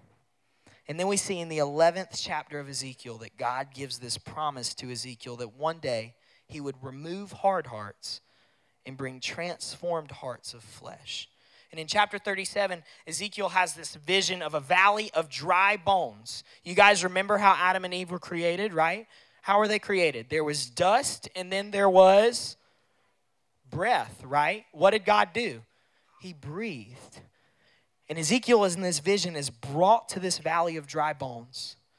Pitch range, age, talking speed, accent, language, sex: 140-185 Hz, 20-39, 165 wpm, American, English, male